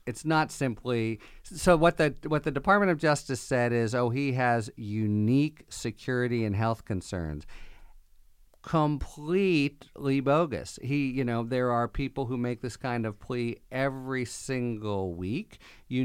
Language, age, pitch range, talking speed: English, 50-69, 100-125 Hz, 145 wpm